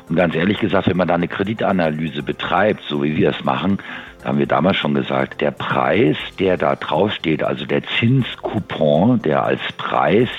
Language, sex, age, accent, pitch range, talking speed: German, male, 50-69, German, 75-95 Hz, 180 wpm